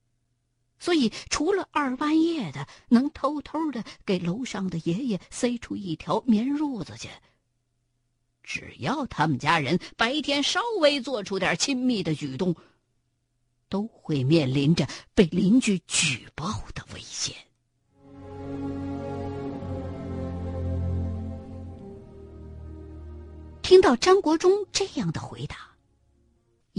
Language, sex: Chinese, female